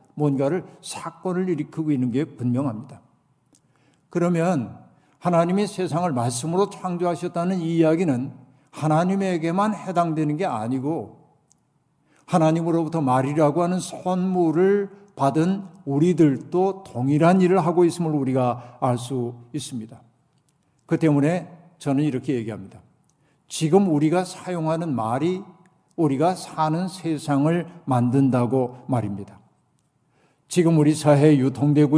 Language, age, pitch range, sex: Korean, 50-69, 140-175 Hz, male